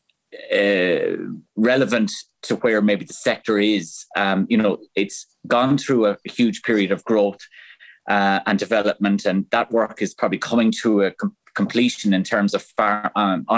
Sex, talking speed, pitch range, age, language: male, 165 wpm, 95-120 Hz, 30-49, English